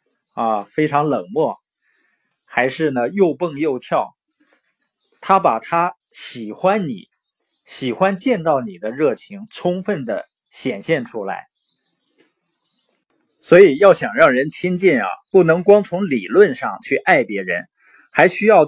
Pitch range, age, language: 145-215 Hz, 20-39, Chinese